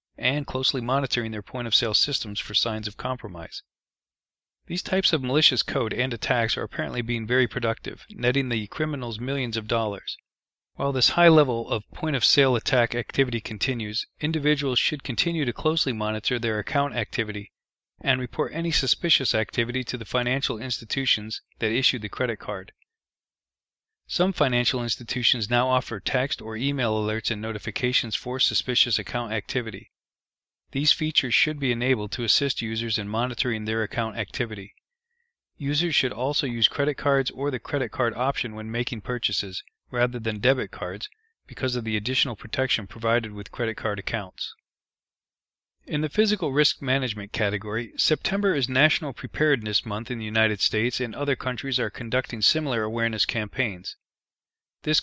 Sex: male